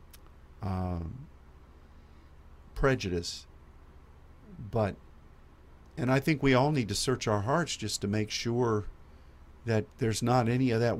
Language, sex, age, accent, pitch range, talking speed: English, male, 50-69, American, 75-115 Hz, 125 wpm